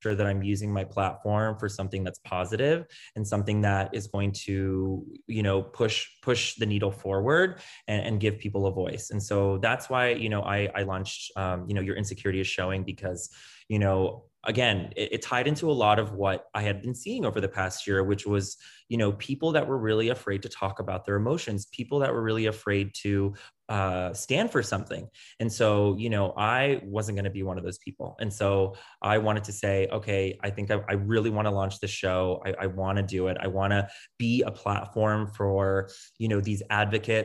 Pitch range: 95-110 Hz